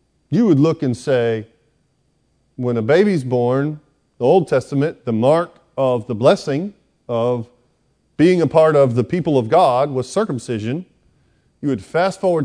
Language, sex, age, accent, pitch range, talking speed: English, male, 40-59, American, 120-160 Hz, 155 wpm